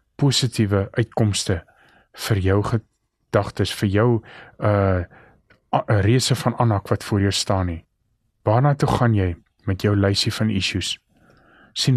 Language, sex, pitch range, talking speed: English, male, 100-125 Hz, 140 wpm